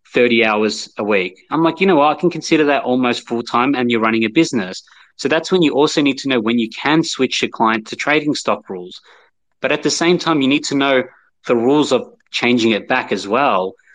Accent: Australian